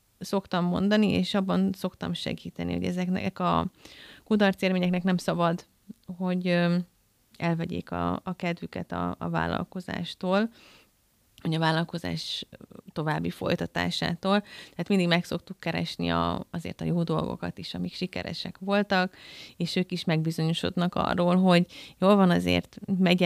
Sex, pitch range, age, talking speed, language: female, 155-185 Hz, 30-49, 125 wpm, Hungarian